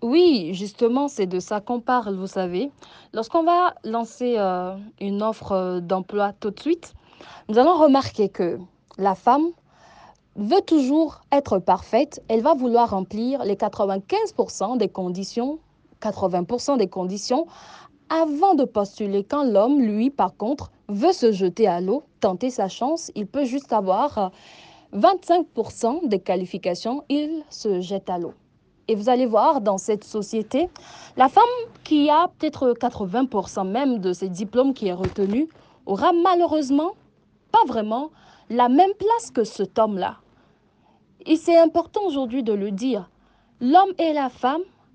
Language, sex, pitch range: French, female, 200-290 Hz